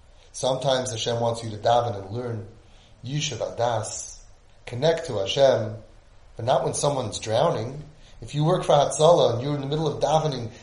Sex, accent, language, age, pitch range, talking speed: male, American, English, 30-49, 115-160 Hz, 170 wpm